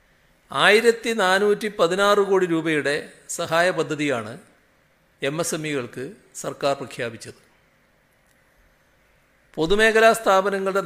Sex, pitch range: male, 145-195 Hz